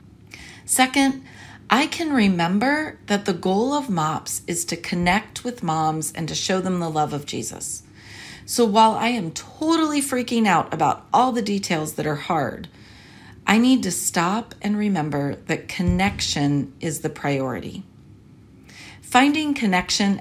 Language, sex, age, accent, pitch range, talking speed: English, female, 40-59, American, 155-220 Hz, 145 wpm